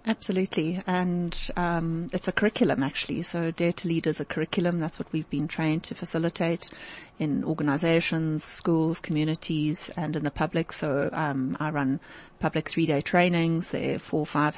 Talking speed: 170 wpm